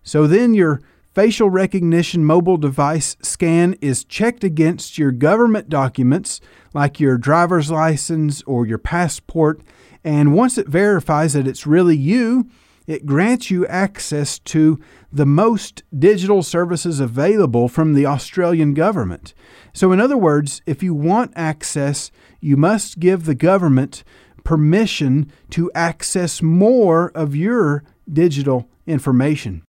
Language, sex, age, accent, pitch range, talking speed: English, male, 40-59, American, 145-190 Hz, 130 wpm